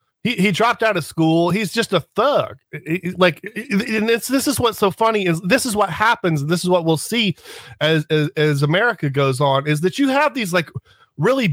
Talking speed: 220 wpm